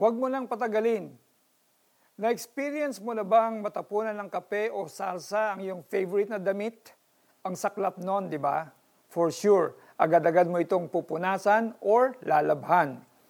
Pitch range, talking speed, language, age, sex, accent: 175-215 Hz, 140 wpm, Filipino, 50-69, male, native